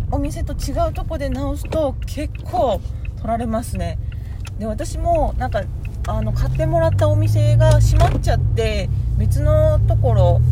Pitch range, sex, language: 95-110 Hz, female, Japanese